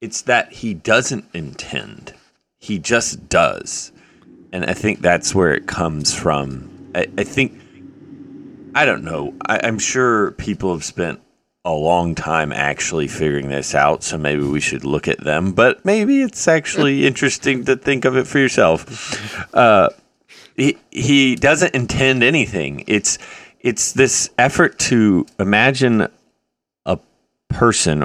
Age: 30-49